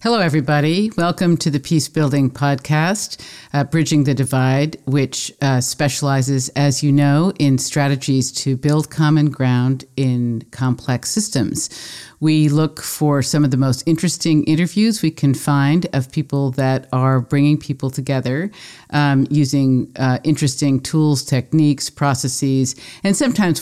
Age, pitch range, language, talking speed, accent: 50-69, 130-160 Hz, English, 140 wpm, American